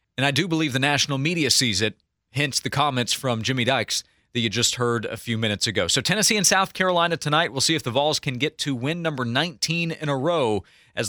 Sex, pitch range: male, 125-160 Hz